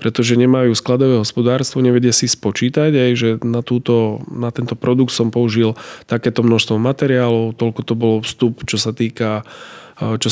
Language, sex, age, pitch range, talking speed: Slovak, male, 20-39, 110-125 Hz, 155 wpm